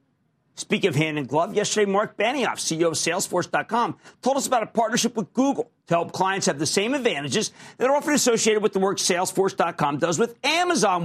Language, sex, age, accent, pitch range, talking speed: English, male, 50-69, American, 160-225 Hz, 185 wpm